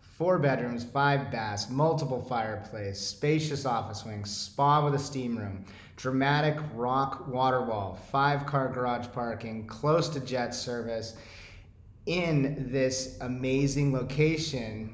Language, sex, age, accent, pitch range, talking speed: English, male, 30-49, American, 110-140 Hz, 115 wpm